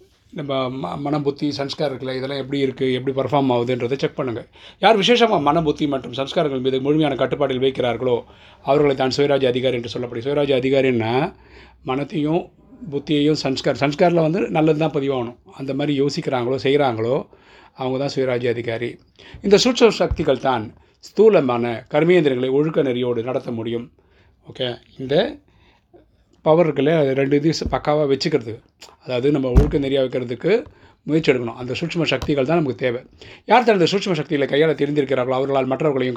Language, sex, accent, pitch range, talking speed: Tamil, male, native, 125-150 Hz, 130 wpm